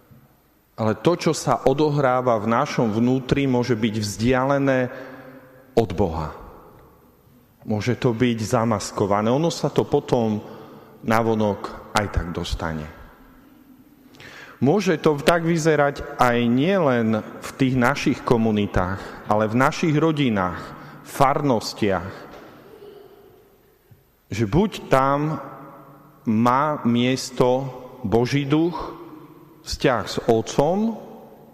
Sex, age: male, 40-59